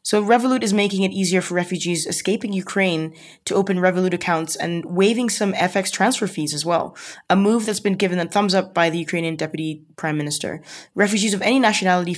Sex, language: female, English